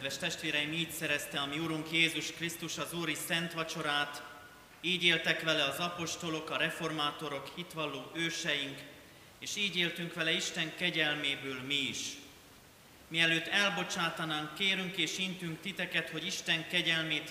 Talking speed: 130 wpm